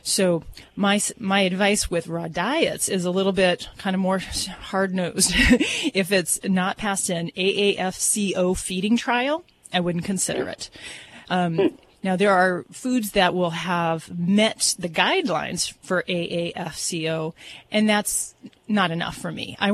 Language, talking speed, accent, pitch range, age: English, 145 wpm, American, 170-200 Hz, 30-49